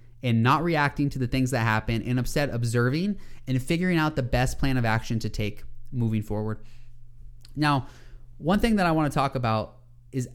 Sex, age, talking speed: male, 20-39, 190 wpm